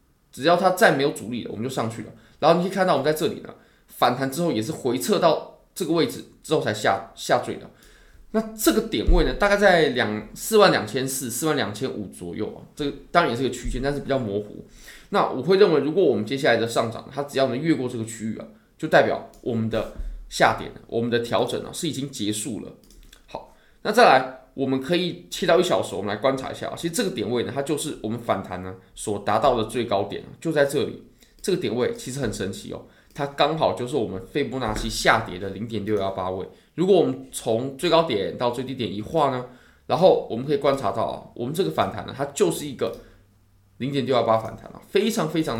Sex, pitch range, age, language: male, 110-150 Hz, 20-39, Chinese